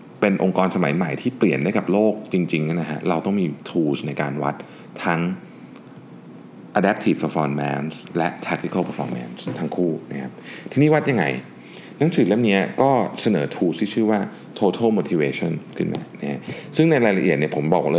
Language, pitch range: Thai, 80-110 Hz